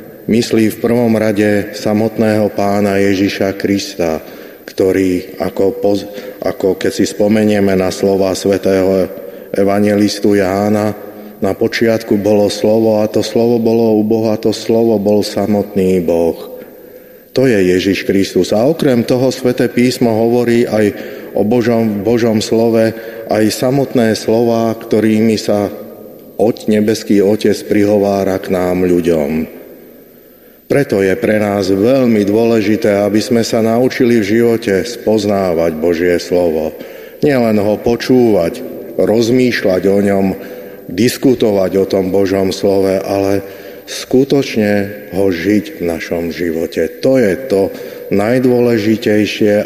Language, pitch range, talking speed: Slovak, 95-110 Hz, 120 wpm